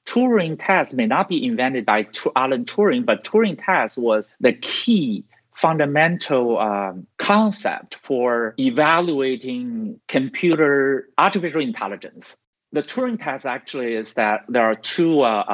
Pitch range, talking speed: 115-165 Hz, 125 wpm